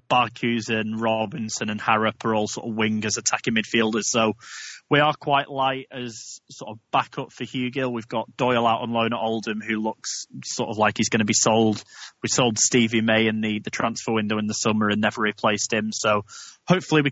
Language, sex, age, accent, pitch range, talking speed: English, male, 20-39, British, 110-125 Hz, 210 wpm